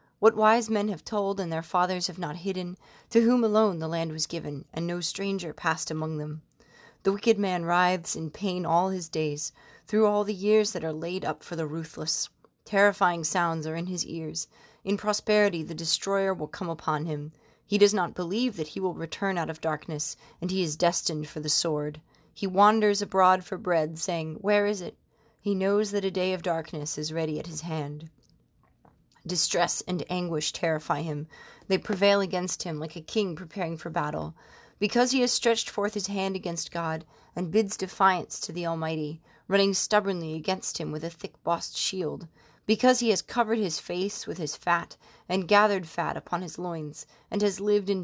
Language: English